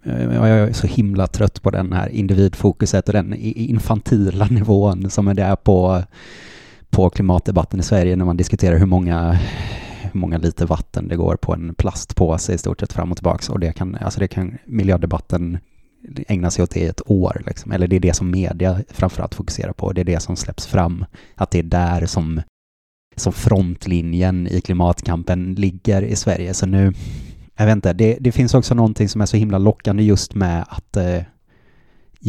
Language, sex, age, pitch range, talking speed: Swedish, male, 30-49, 90-105 Hz, 185 wpm